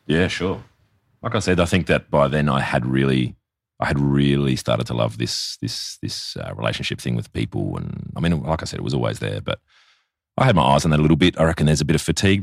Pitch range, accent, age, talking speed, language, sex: 70-85 Hz, Australian, 30-49, 260 wpm, English, male